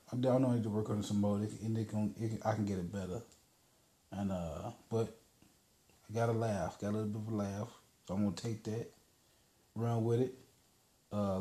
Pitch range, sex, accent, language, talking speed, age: 105-125 Hz, male, American, English, 200 wpm, 30-49